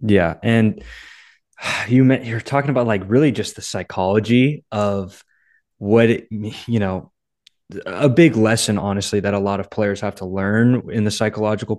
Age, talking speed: 20-39, 170 wpm